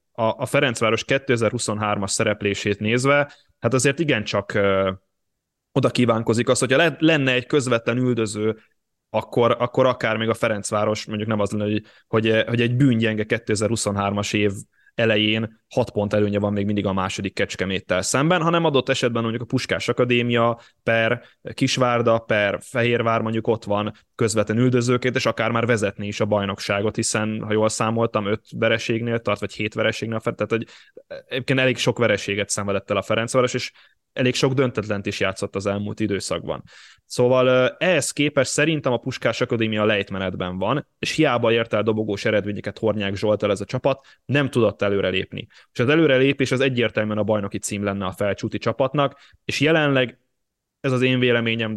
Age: 20-39